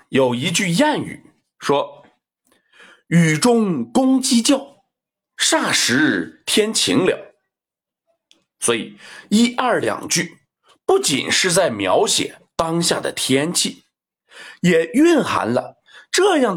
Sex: male